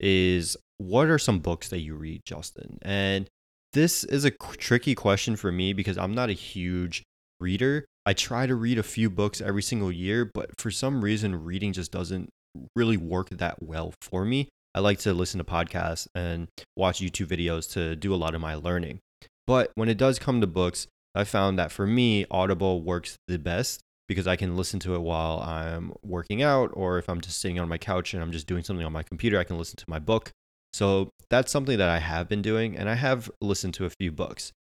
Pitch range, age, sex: 85-105 Hz, 20-39, male